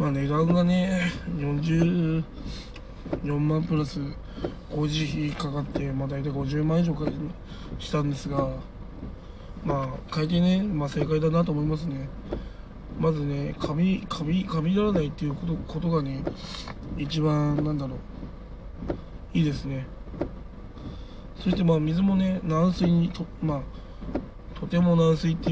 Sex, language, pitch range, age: male, Japanese, 145-170 Hz, 20-39